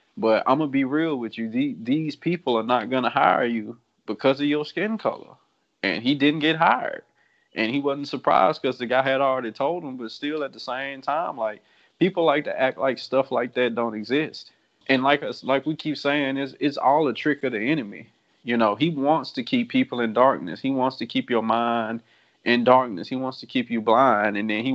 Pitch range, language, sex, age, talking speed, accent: 115-140 Hz, English, male, 20-39, 230 wpm, American